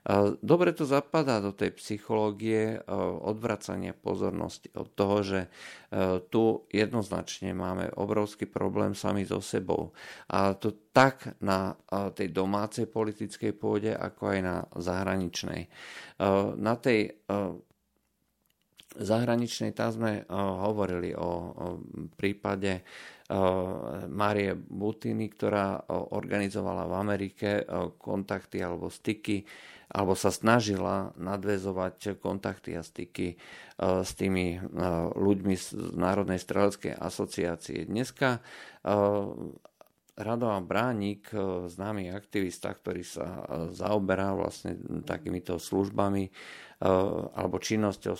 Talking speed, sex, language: 95 wpm, male, Slovak